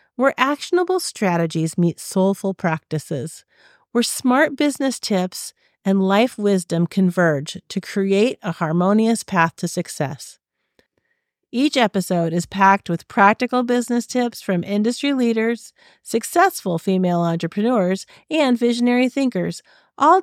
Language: English